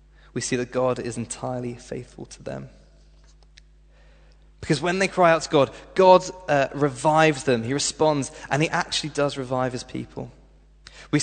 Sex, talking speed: male, 160 wpm